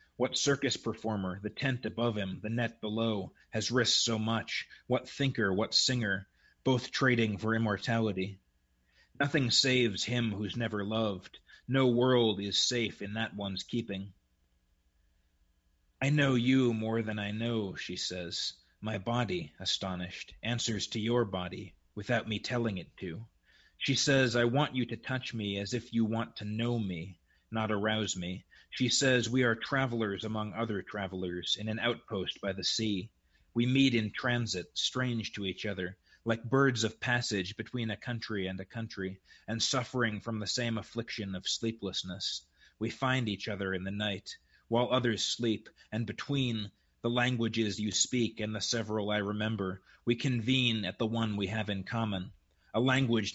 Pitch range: 100-120 Hz